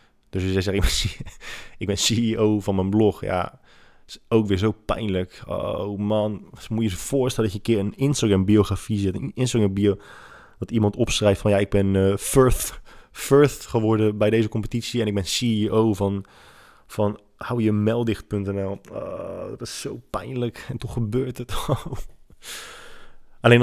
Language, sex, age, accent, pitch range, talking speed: Dutch, male, 20-39, Dutch, 105-135 Hz, 170 wpm